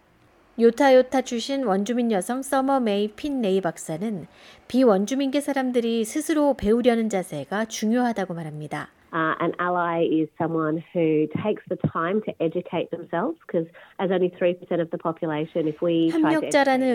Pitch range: 180-245 Hz